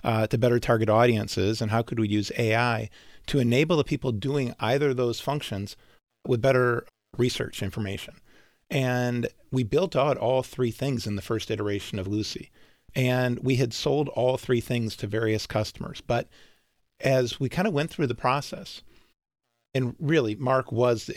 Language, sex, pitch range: English, male, 110-130 Hz